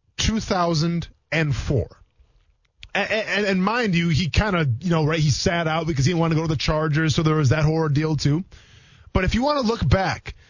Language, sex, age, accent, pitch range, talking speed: English, male, 20-39, American, 125-190 Hz, 215 wpm